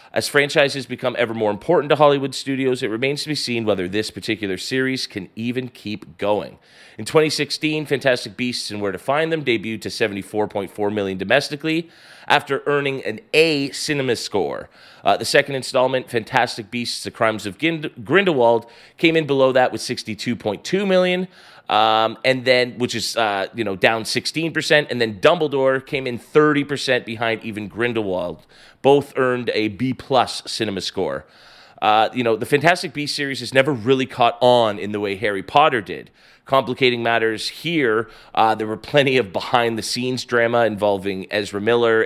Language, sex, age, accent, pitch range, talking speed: English, male, 30-49, American, 110-145 Hz, 165 wpm